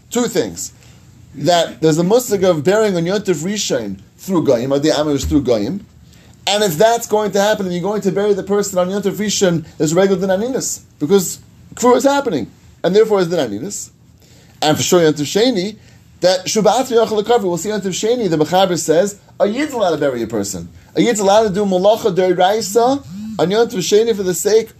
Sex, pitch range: male, 150-210 Hz